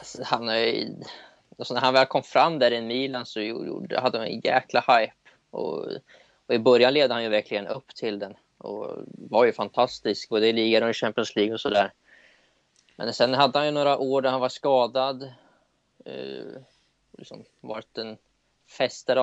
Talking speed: 175 wpm